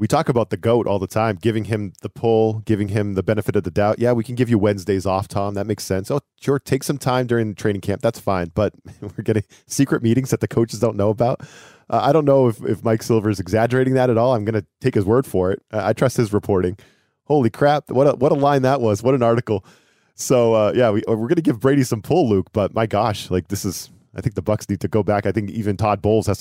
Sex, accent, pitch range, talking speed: male, American, 100-120 Hz, 275 wpm